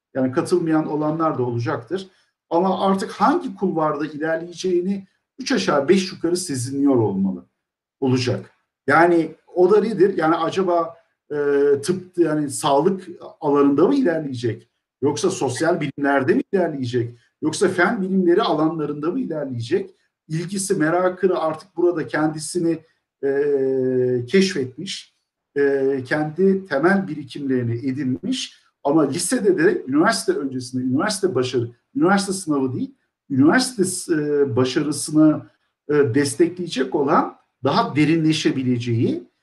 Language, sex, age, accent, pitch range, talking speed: Turkish, male, 50-69, native, 140-180 Hz, 110 wpm